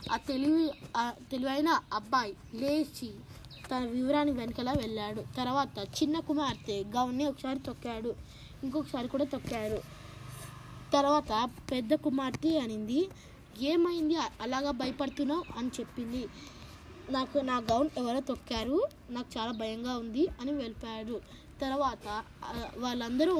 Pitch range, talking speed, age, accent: 230-290 Hz, 105 wpm, 20-39, native